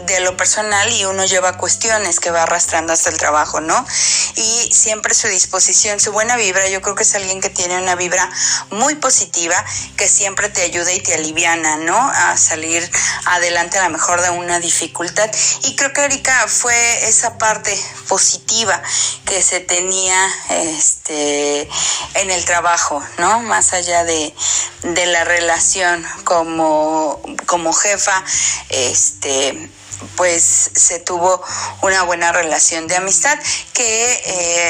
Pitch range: 170-200 Hz